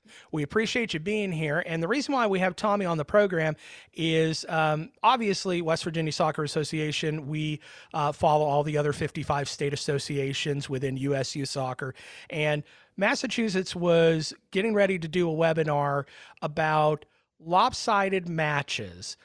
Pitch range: 145-180 Hz